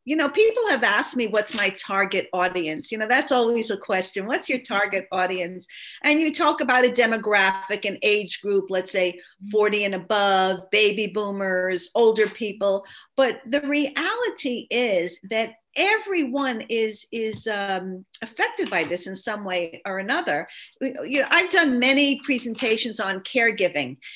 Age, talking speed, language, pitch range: 50-69, 155 wpm, English, 200-275 Hz